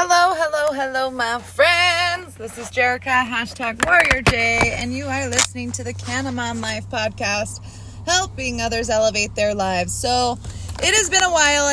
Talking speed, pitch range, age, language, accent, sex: 160 wpm, 200-265 Hz, 20-39, English, American, female